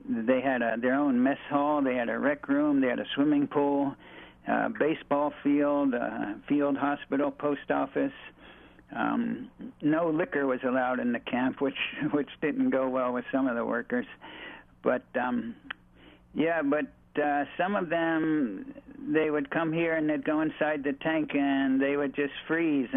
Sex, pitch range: male, 135-160 Hz